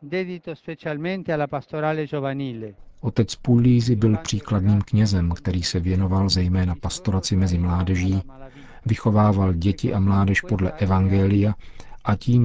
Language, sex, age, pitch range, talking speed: Czech, male, 50-69, 95-110 Hz, 95 wpm